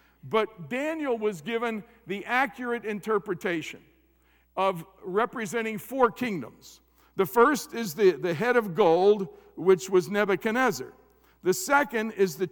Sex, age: male, 60-79